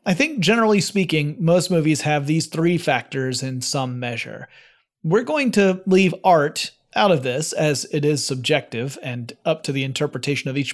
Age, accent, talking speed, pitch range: 30-49, American, 180 wpm, 140-180 Hz